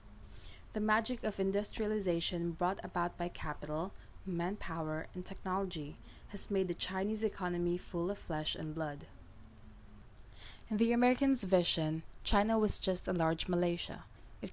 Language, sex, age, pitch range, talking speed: English, female, 20-39, 165-205 Hz, 130 wpm